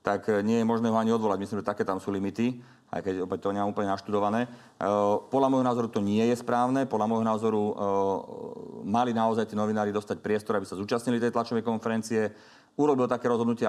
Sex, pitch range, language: male, 105-120 Hz, Slovak